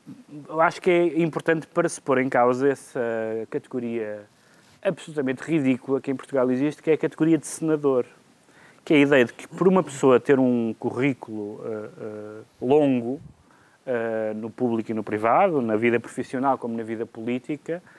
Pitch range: 125-180 Hz